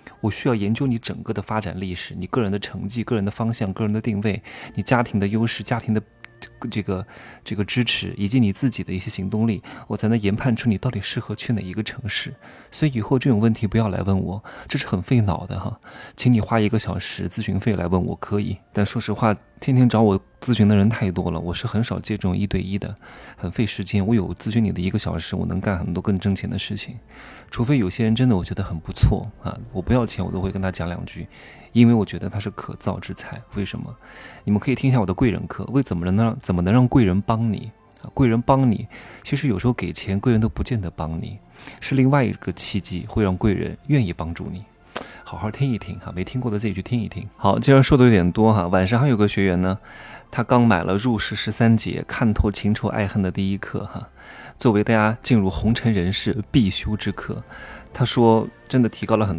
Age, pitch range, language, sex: 20-39, 95-115 Hz, Chinese, male